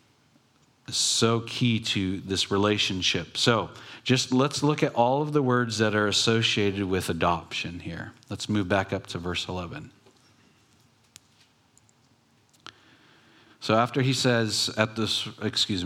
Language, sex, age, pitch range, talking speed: English, male, 40-59, 100-125 Hz, 130 wpm